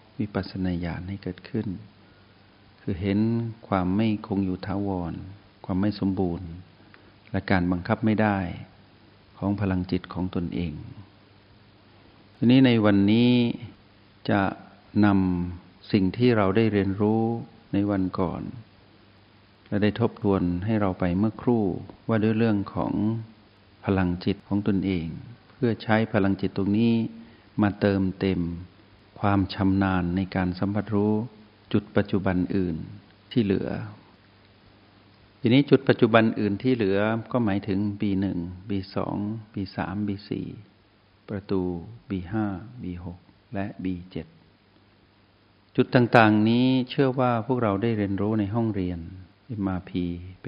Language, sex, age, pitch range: Thai, male, 60-79, 95-110 Hz